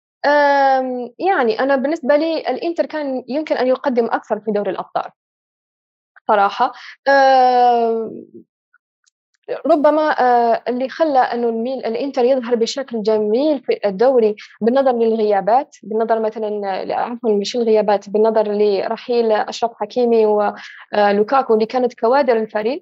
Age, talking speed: 10-29, 110 wpm